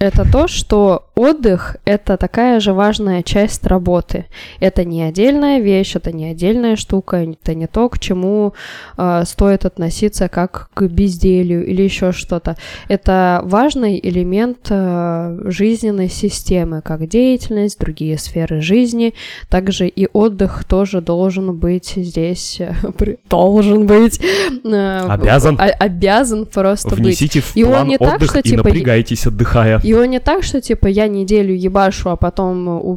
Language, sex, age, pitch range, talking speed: Russian, female, 20-39, 175-205 Hz, 135 wpm